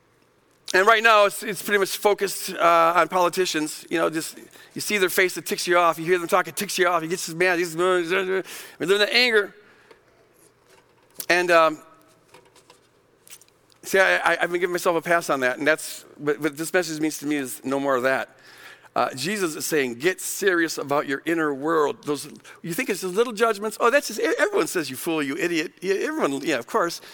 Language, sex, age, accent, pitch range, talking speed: English, male, 50-69, American, 175-260 Hz, 205 wpm